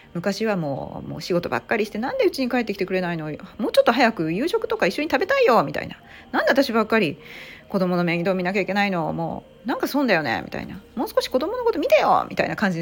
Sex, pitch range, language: female, 150-255 Hz, Japanese